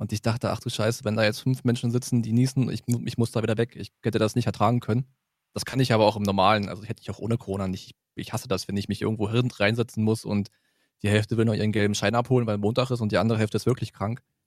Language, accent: German, German